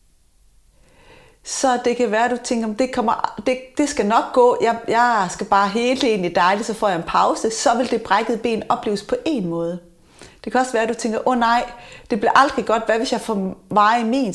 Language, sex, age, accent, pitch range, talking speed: Danish, female, 30-49, native, 190-245 Hz, 240 wpm